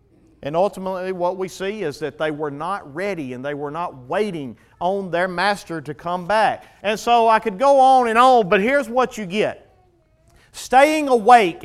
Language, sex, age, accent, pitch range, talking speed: English, male, 40-59, American, 170-265 Hz, 190 wpm